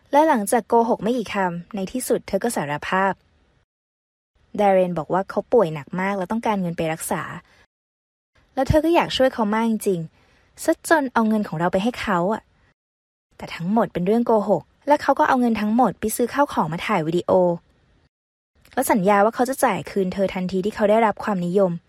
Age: 20-39